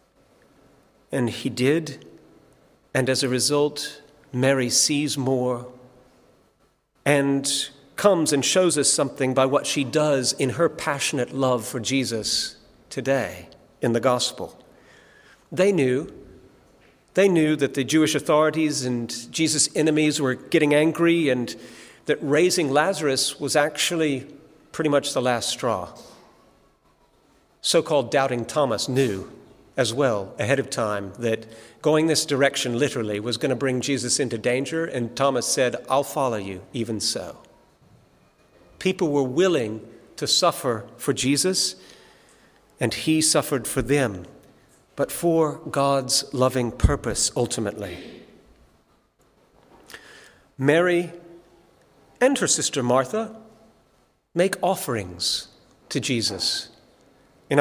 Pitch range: 125-155 Hz